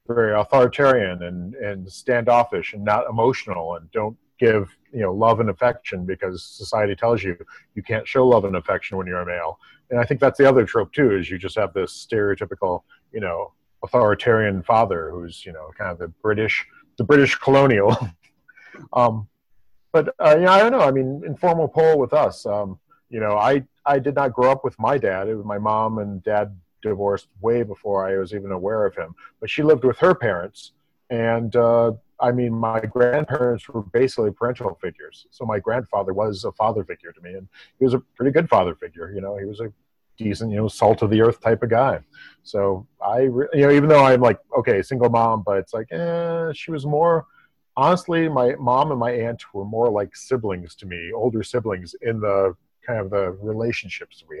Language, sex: English, male